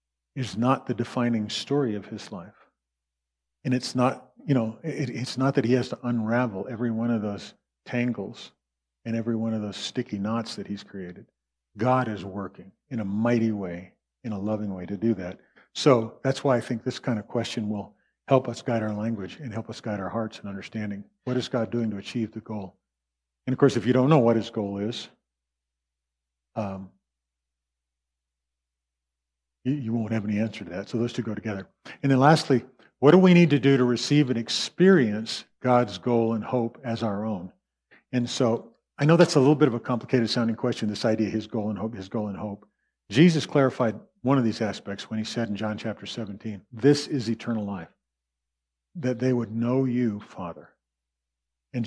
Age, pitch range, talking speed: 40-59, 100-125 Hz, 200 wpm